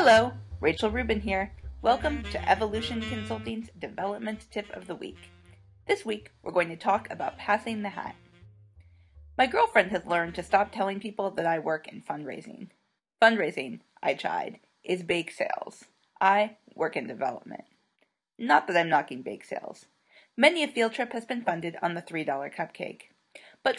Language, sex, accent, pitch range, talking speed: English, female, American, 160-215 Hz, 160 wpm